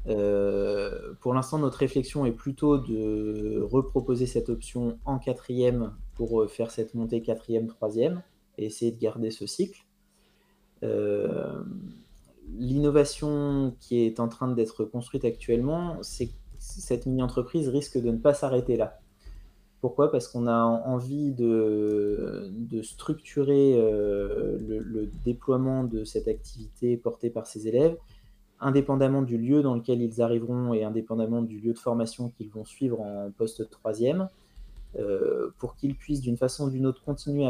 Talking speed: 145 wpm